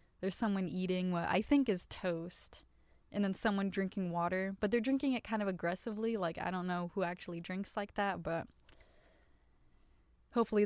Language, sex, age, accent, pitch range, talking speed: English, female, 20-39, American, 175-200 Hz, 175 wpm